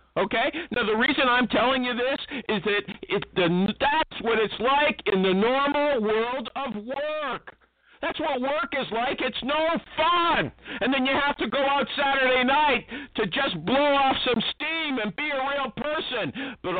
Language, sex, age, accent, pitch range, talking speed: English, male, 50-69, American, 200-280 Hz, 180 wpm